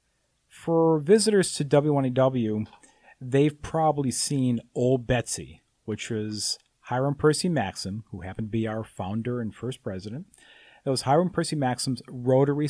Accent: American